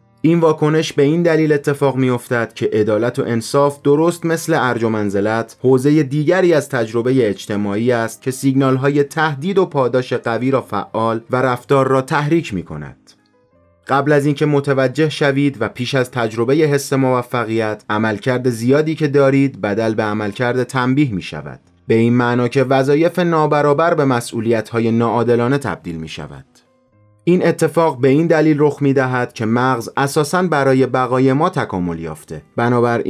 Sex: male